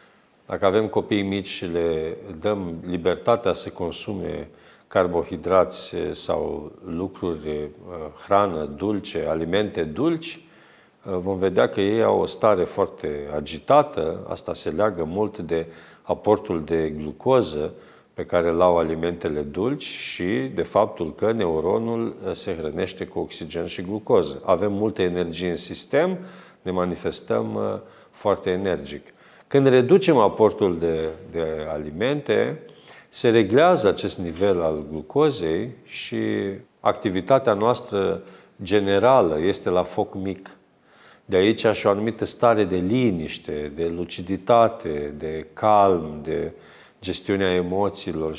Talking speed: 120 wpm